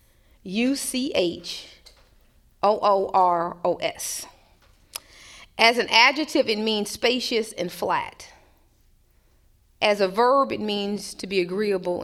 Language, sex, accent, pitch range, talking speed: English, female, American, 175-220 Hz, 85 wpm